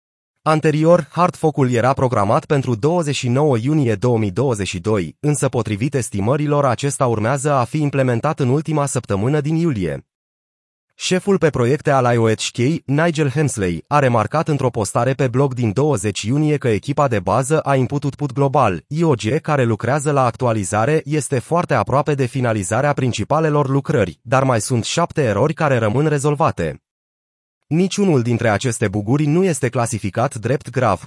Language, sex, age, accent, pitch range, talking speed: Romanian, male, 30-49, native, 115-150 Hz, 145 wpm